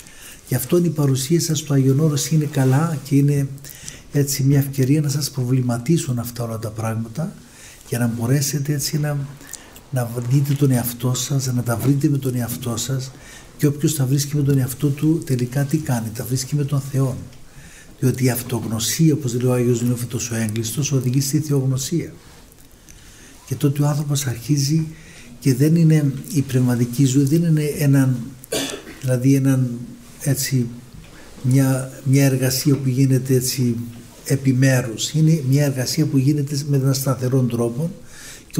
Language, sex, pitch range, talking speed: Greek, male, 125-145 Hz, 155 wpm